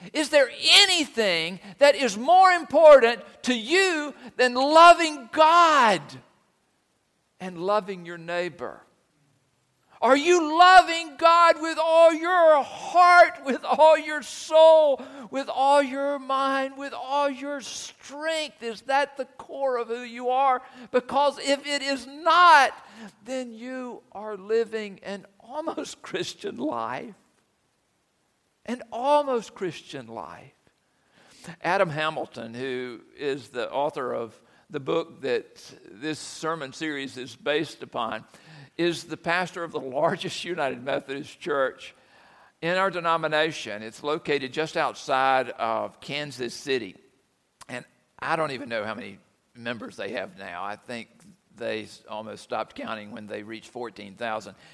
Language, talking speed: English, 130 wpm